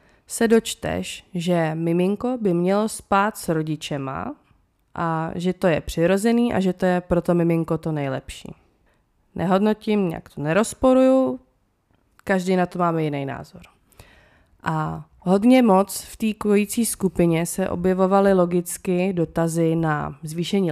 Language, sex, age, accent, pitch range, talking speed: Czech, female, 20-39, native, 165-210 Hz, 130 wpm